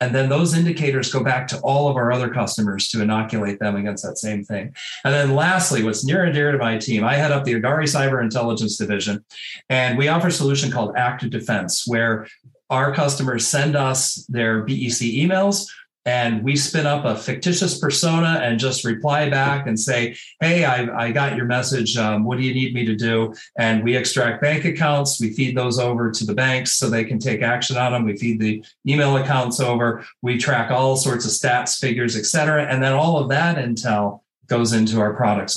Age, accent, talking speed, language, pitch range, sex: 40-59, American, 210 wpm, English, 115-140 Hz, male